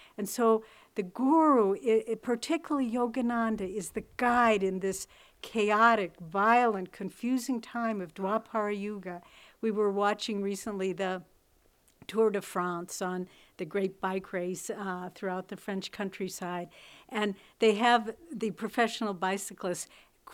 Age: 60-79